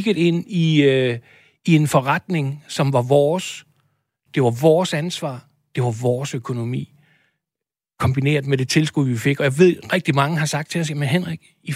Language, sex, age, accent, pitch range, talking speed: Danish, male, 60-79, native, 135-170 Hz, 185 wpm